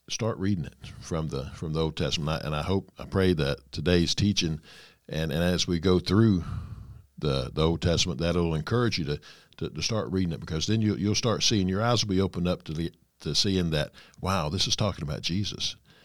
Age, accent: 60-79, American